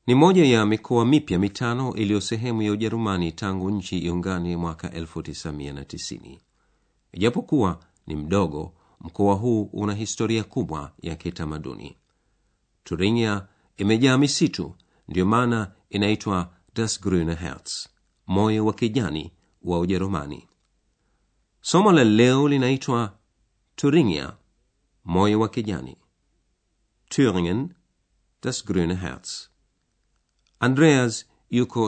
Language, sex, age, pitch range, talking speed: Swahili, male, 50-69, 90-115 Hz, 95 wpm